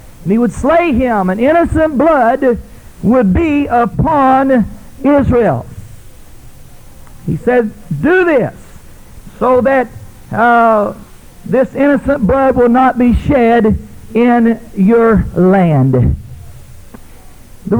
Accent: American